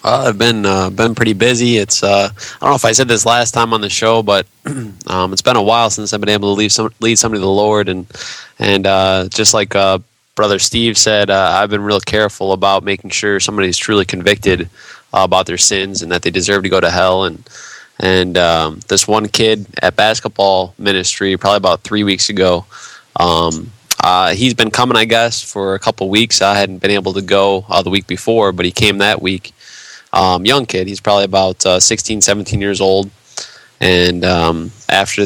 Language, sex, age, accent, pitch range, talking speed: English, male, 20-39, American, 95-110 Hz, 215 wpm